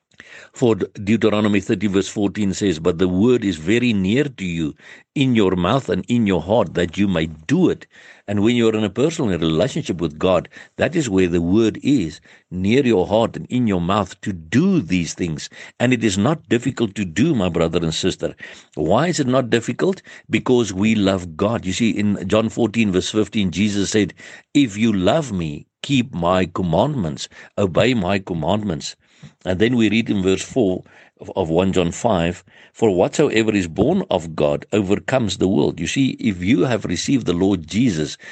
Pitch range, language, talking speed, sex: 90-115 Hz, English, 190 wpm, male